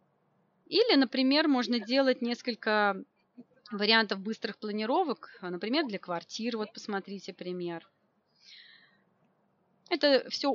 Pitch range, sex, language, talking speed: 200-255 Hz, female, Russian, 90 wpm